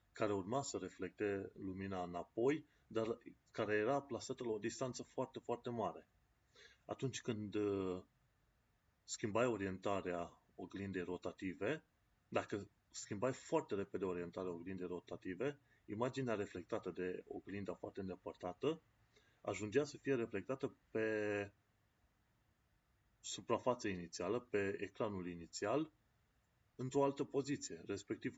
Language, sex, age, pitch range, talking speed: Romanian, male, 30-49, 95-120 Hz, 105 wpm